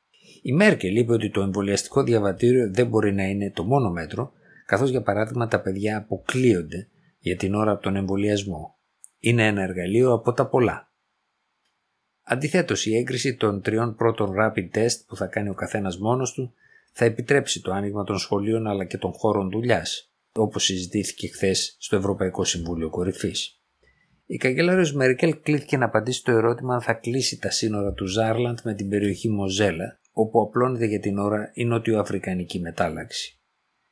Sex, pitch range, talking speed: male, 95-120 Hz, 160 wpm